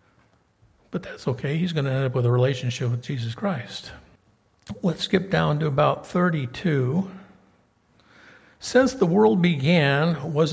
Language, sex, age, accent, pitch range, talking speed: English, male, 60-79, American, 125-165 Hz, 140 wpm